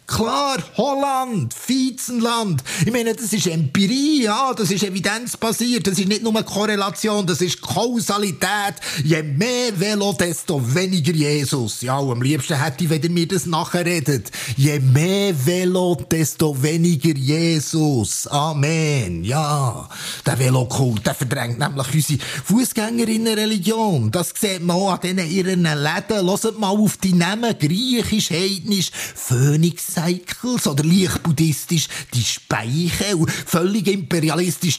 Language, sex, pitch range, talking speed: German, male, 155-215 Hz, 135 wpm